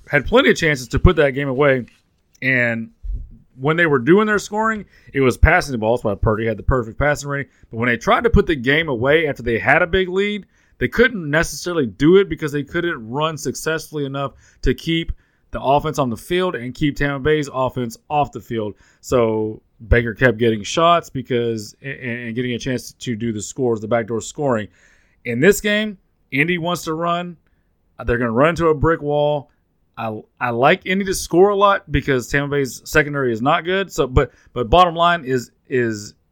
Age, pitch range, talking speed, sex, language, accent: 30-49, 115-165 Hz, 205 wpm, male, English, American